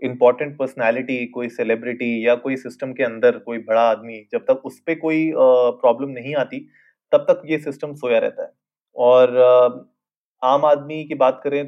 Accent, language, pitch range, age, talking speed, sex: native, Hindi, 125-160 Hz, 30-49, 175 wpm, male